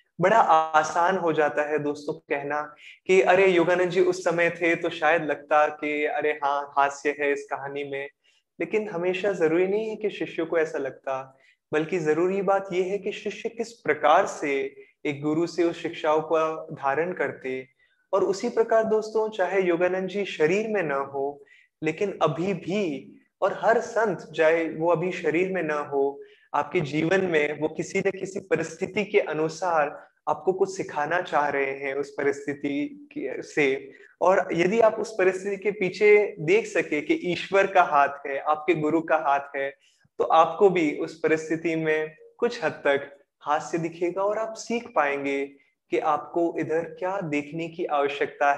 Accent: native